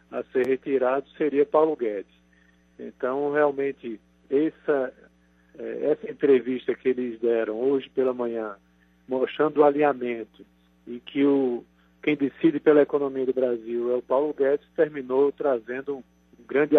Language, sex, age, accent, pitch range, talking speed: Portuguese, male, 40-59, Brazilian, 120-160 Hz, 130 wpm